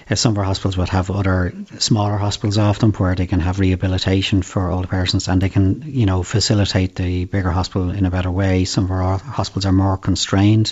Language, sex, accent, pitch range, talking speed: English, male, Irish, 90-100 Hz, 215 wpm